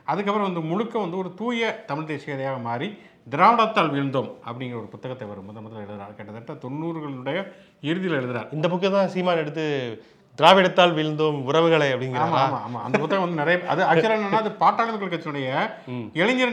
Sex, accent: male, Indian